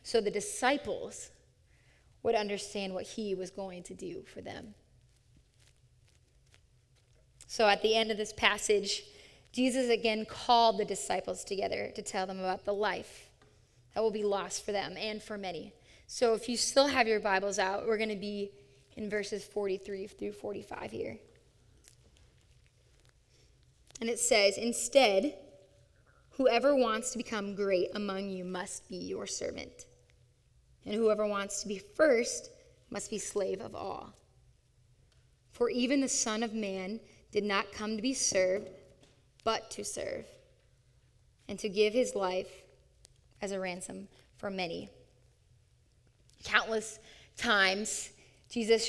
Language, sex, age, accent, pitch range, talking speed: English, female, 20-39, American, 185-225 Hz, 140 wpm